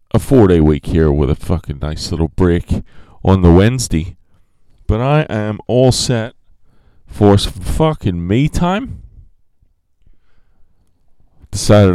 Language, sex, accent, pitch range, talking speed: English, male, American, 80-110 Hz, 125 wpm